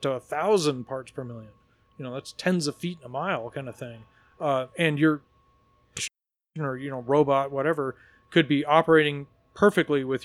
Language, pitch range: English, 130-155 Hz